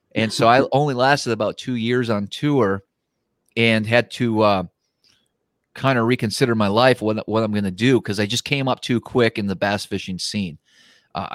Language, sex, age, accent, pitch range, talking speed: English, male, 30-49, American, 105-120 Hz, 200 wpm